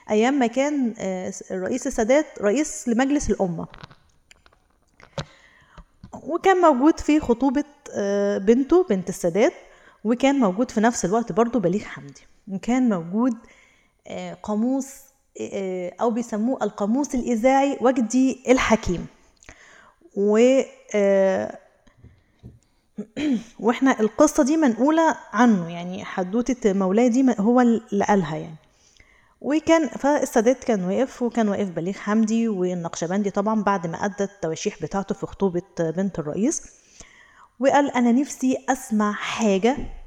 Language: Arabic